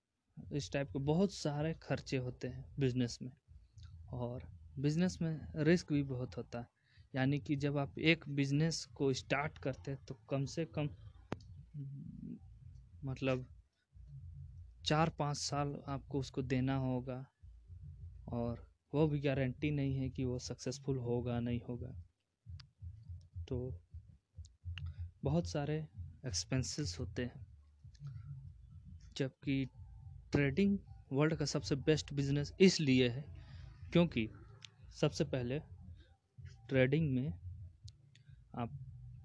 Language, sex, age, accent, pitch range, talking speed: Hindi, male, 20-39, native, 105-145 Hz, 110 wpm